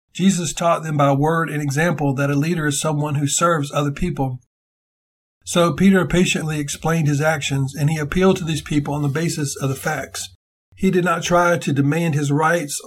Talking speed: 195 wpm